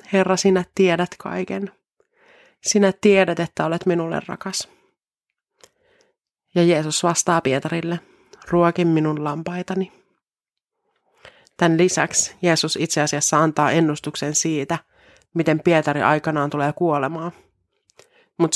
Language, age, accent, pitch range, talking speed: Finnish, 30-49, native, 160-195 Hz, 100 wpm